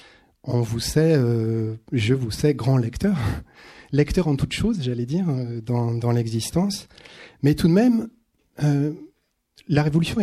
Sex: male